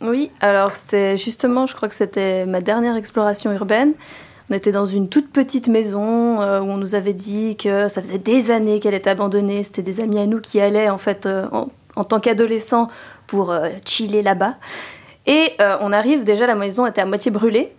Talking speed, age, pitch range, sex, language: 210 wpm, 20-39, 205-245 Hz, female, French